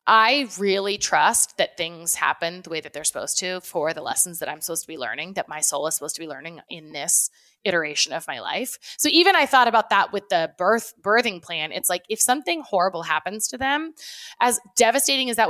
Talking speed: 225 wpm